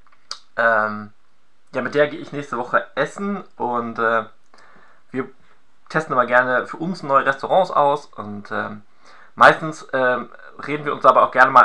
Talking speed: 160 wpm